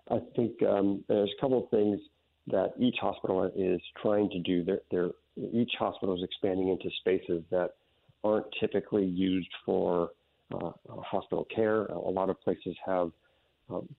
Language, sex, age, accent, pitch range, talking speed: English, male, 50-69, American, 90-100 Hz, 160 wpm